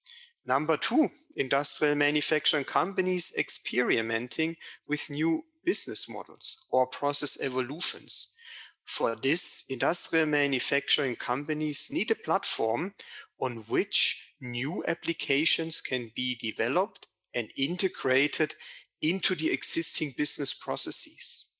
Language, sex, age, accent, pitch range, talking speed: English, male, 40-59, German, 135-185 Hz, 95 wpm